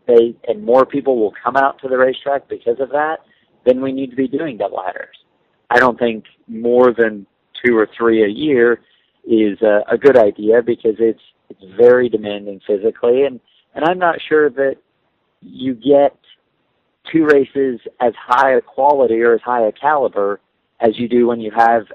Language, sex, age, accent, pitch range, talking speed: English, male, 40-59, American, 115-140 Hz, 180 wpm